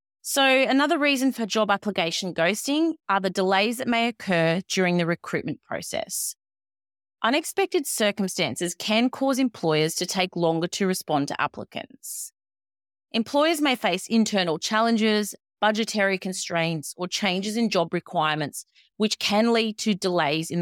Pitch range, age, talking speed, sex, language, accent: 170-225 Hz, 30-49, 135 wpm, female, English, Australian